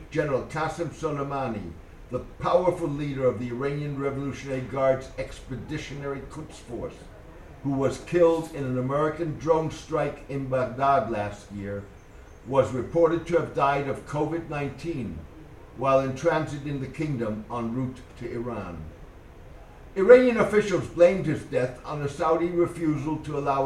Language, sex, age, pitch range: English, male, 60-79, 120-160 Hz